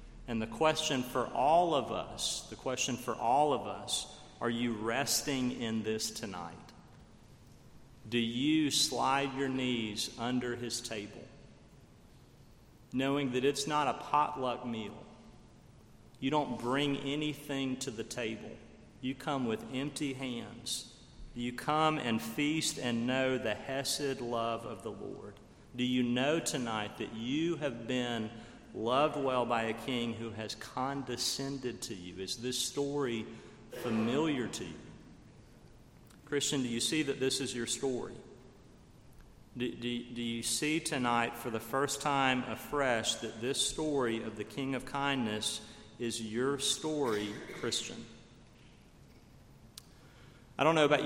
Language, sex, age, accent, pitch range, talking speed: English, male, 40-59, American, 115-140 Hz, 140 wpm